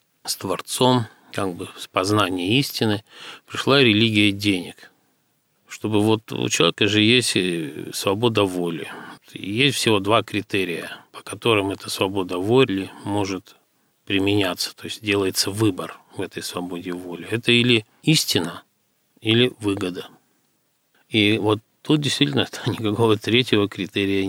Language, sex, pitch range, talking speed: Russian, male, 95-115 Hz, 120 wpm